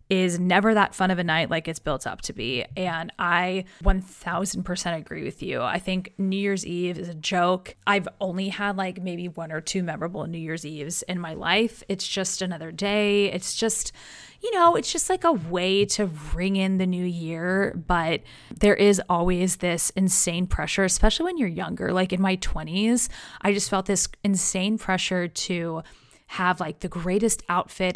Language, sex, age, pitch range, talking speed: English, female, 20-39, 175-200 Hz, 190 wpm